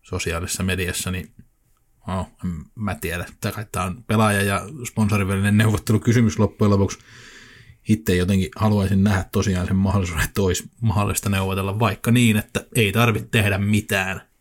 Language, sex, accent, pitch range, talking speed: Finnish, male, native, 95-115 Hz, 135 wpm